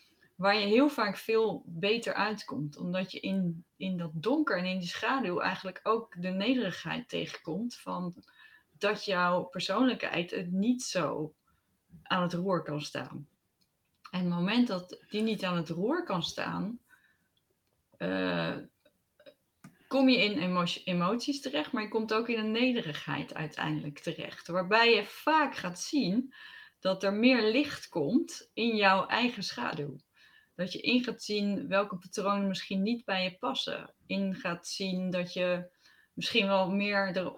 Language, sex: Dutch, female